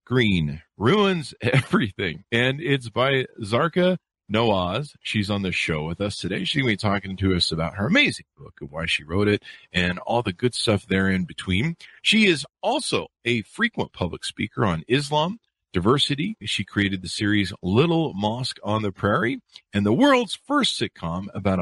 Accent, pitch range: American, 95-140 Hz